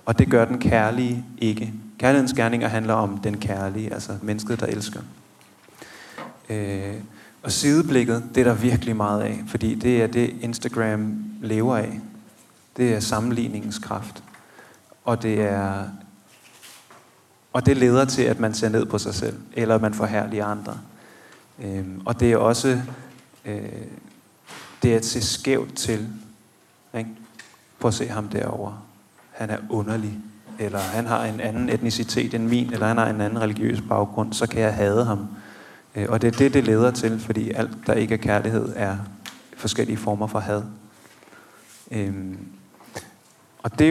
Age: 30-49